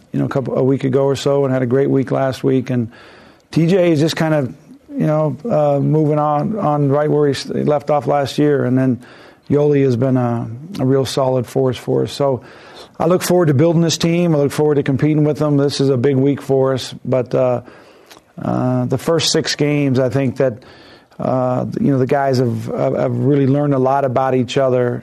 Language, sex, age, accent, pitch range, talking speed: English, male, 50-69, American, 125-145 Hz, 225 wpm